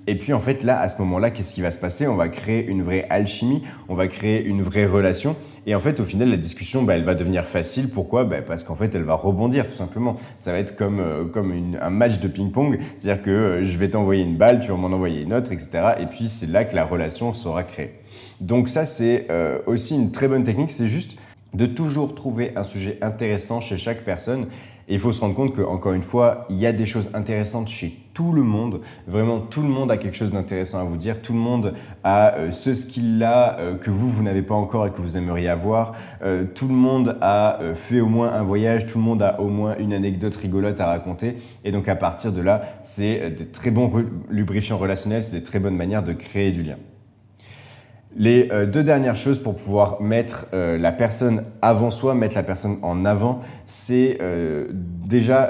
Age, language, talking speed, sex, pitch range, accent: 30-49, French, 230 wpm, male, 95-120 Hz, French